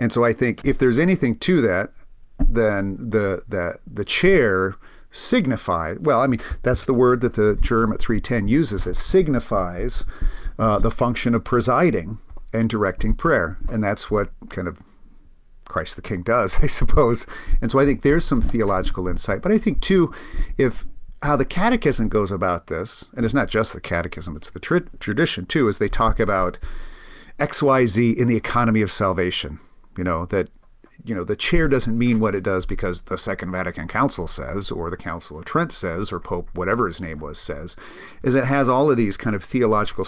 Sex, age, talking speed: male, 50-69, 190 wpm